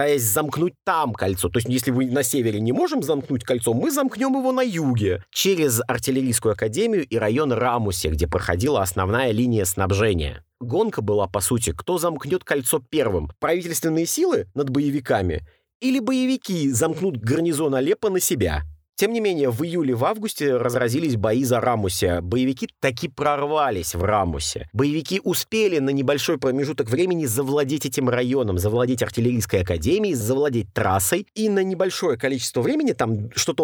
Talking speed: 155 wpm